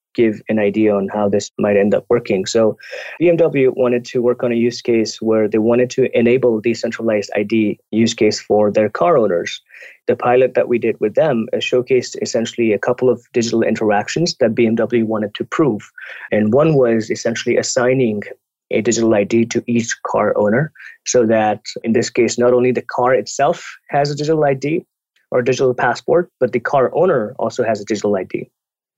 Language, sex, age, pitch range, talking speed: English, male, 20-39, 110-125 Hz, 185 wpm